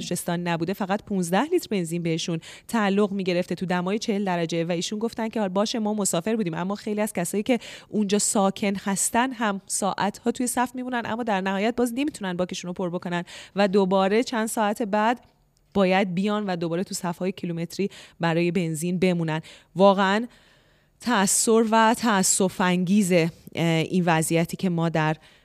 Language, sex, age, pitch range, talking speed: Persian, female, 30-49, 170-205 Hz, 170 wpm